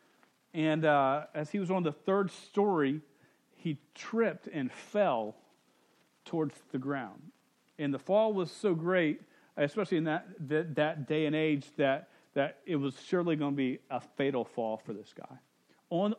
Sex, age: male, 40-59